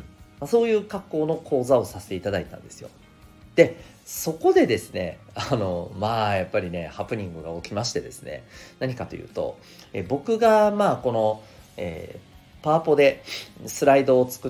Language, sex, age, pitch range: Japanese, male, 40-59, 90-145 Hz